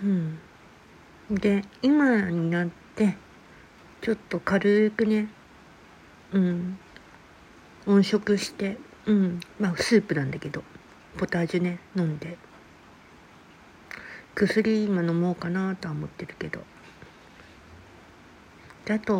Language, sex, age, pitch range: Japanese, female, 60-79, 160-200 Hz